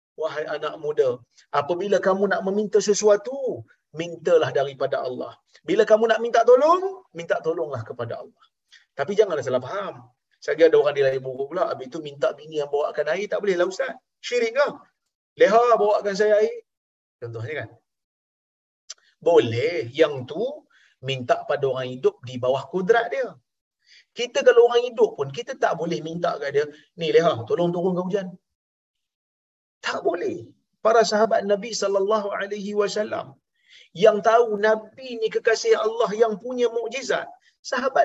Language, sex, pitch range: Malayalam, male, 165-270 Hz